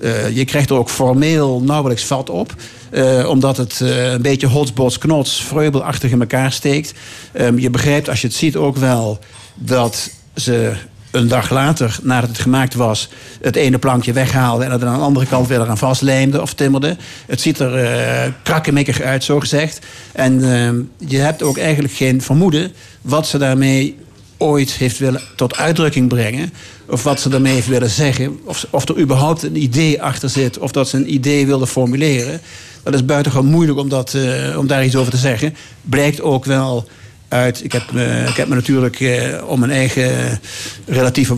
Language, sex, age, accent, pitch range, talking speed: Dutch, male, 50-69, Dutch, 125-140 Hz, 180 wpm